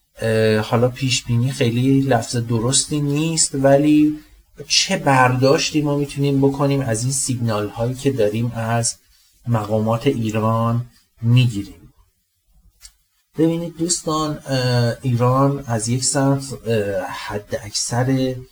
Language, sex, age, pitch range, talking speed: Persian, male, 40-59, 105-130 Hz, 95 wpm